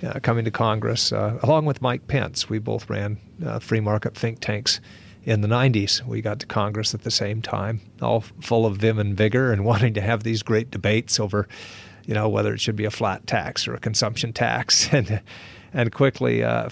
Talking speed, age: 215 wpm, 50-69